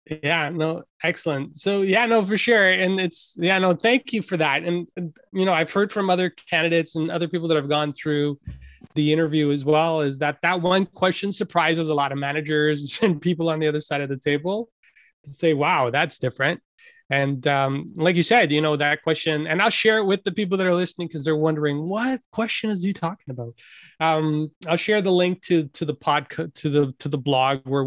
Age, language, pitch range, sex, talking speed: 20-39, English, 145-185 Hz, male, 225 wpm